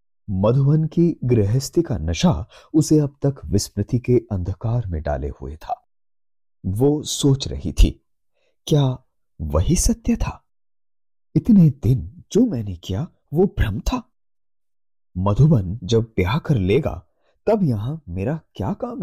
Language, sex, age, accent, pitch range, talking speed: Hindi, male, 30-49, native, 95-140 Hz, 130 wpm